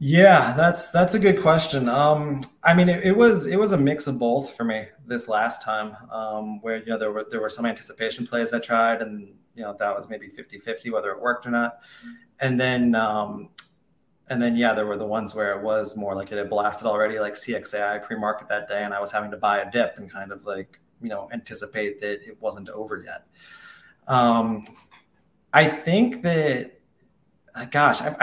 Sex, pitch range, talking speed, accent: male, 105-135 Hz, 210 wpm, American